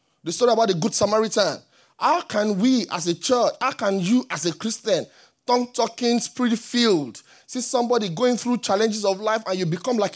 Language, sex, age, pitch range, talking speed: English, male, 30-49, 190-245 Hz, 190 wpm